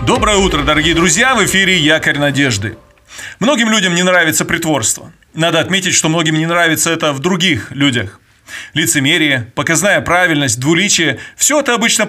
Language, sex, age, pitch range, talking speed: Russian, male, 30-49, 150-200 Hz, 150 wpm